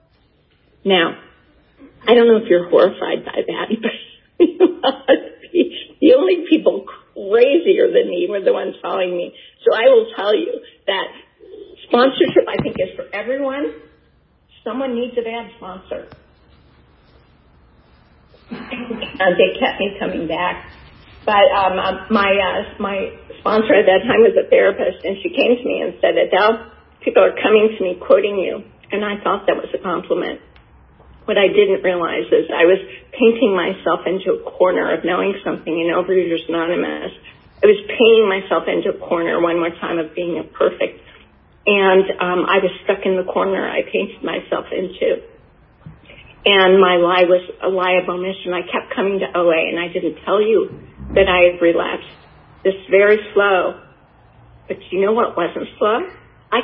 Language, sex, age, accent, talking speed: English, female, 40-59, American, 165 wpm